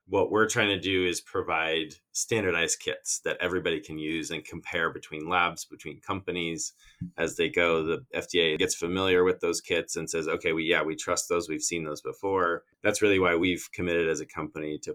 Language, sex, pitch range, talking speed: English, male, 75-100 Hz, 200 wpm